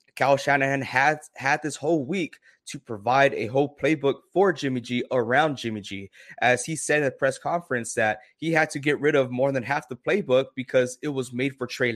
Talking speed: 215 wpm